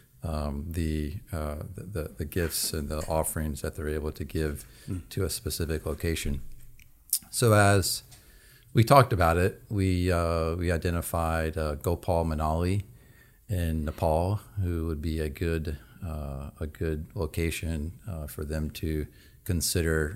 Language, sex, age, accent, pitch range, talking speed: English, male, 40-59, American, 80-100 Hz, 140 wpm